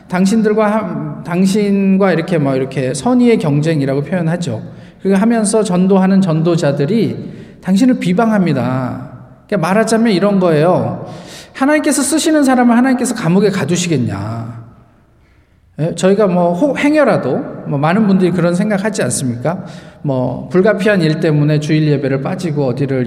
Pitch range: 145-200 Hz